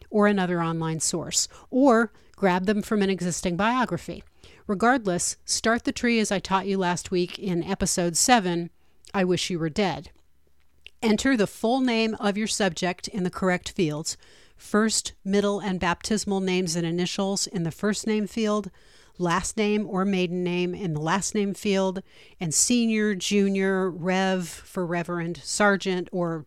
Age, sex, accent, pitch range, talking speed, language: 40-59, female, American, 175-210 Hz, 160 wpm, English